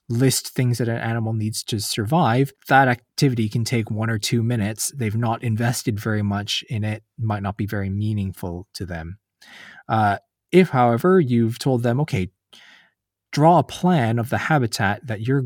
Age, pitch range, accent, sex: 20-39, 110-140 Hz, American, male